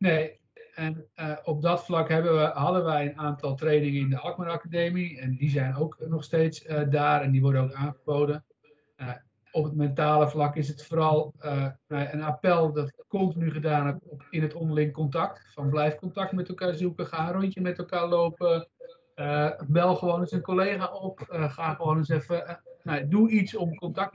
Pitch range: 145-170 Hz